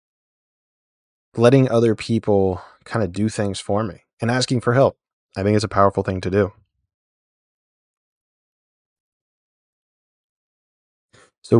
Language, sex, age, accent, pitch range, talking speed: English, male, 20-39, American, 95-120 Hz, 115 wpm